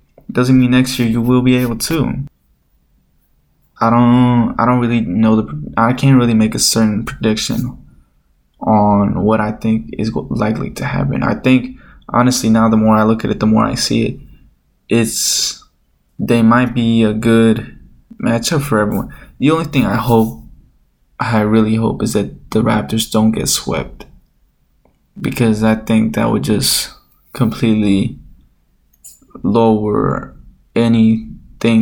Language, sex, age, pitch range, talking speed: English, male, 10-29, 105-120 Hz, 150 wpm